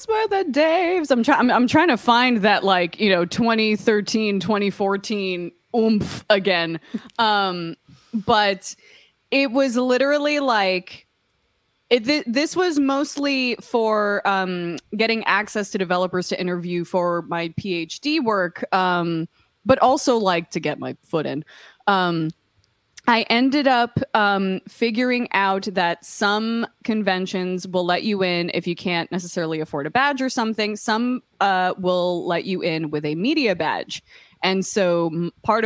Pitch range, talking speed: 175-230 Hz, 145 wpm